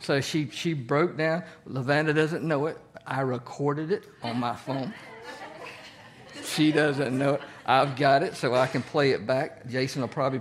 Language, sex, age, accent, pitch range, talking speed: English, male, 50-69, American, 130-160 Hz, 180 wpm